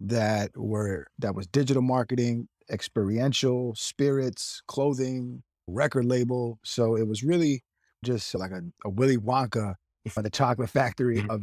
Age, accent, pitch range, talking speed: 20-39, American, 105-125 Hz, 135 wpm